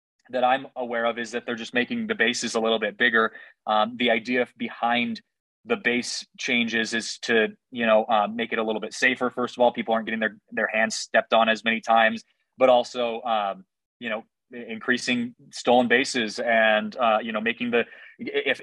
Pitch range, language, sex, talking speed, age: 115-130 Hz, English, male, 200 wpm, 20-39